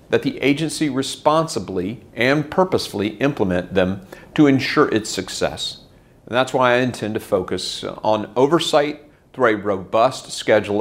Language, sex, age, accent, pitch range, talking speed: English, male, 50-69, American, 100-145 Hz, 135 wpm